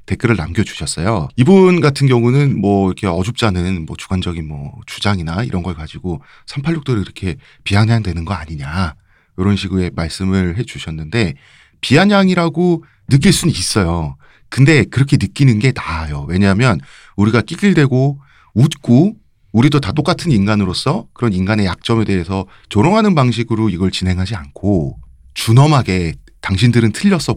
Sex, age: male, 40-59